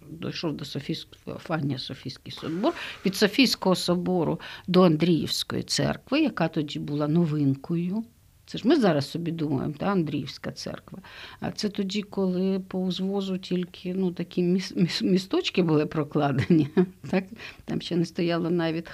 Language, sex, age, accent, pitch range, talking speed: Ukrainian, female, 50-69, native, 160-215 Hz, 135 wpm